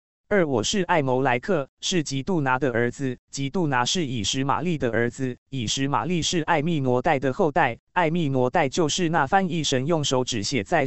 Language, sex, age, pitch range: Chinese, male, 20-39, 125-175 Hz